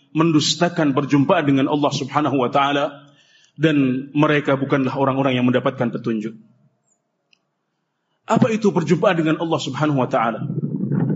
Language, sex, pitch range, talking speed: Indonesian, male, 160-210 Hz, 120 wpm